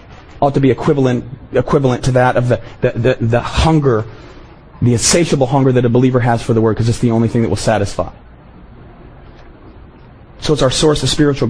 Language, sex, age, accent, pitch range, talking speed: English, male, 40-59, American, 120-150 Hz, 195 wpm